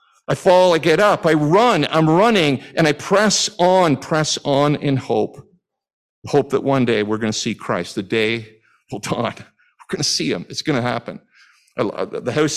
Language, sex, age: English, male, 50-69